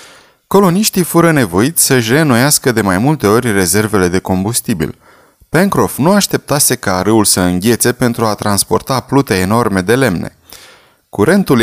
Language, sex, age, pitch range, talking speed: Romanian, male, 20-39, 100-140 Hz, 140 wpm